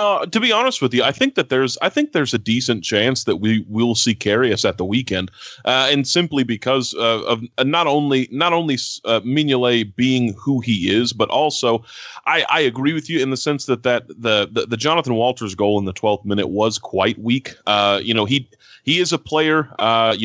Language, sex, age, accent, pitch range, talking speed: English, male, 30-49, American, 110-130 Hz, 225 wpm